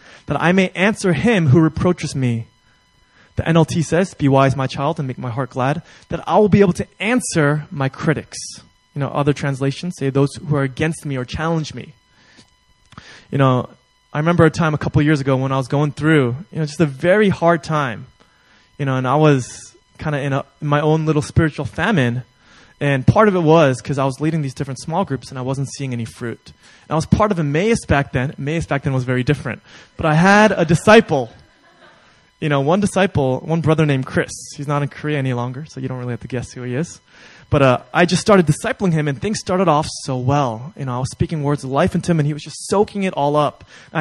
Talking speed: 235 wpm